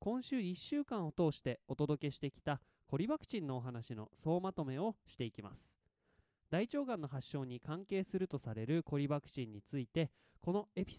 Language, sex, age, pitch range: Japanese, male, 20-39, 125-190 Hz